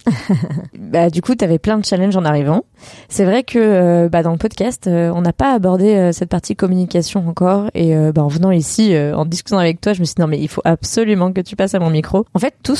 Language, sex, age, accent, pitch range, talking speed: French, female, 20-39, French, 165-200 Hz, 265 wpm